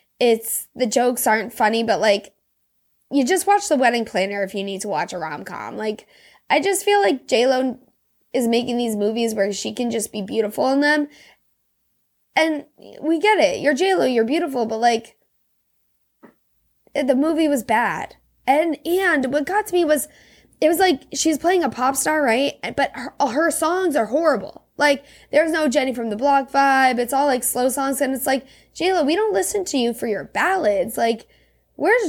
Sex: female